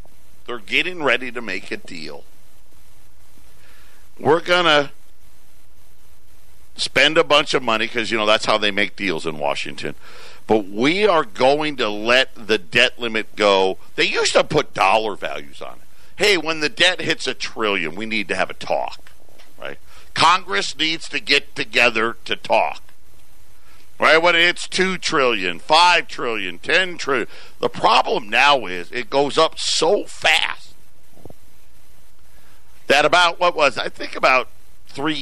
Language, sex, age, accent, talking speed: English, male, 50-69, American, 155 wpm